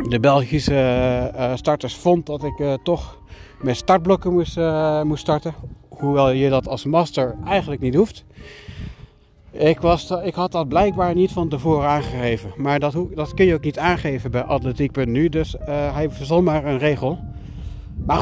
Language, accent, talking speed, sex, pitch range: Dutch, Dutch, 175 wpm, male, 125-160 Hz